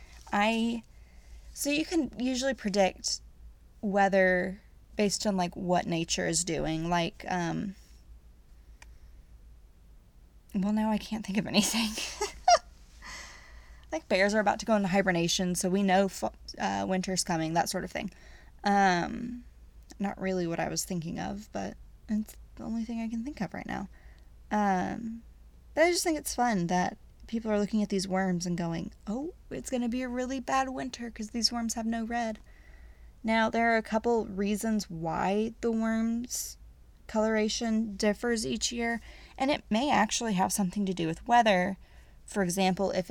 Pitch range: 175-225 Hz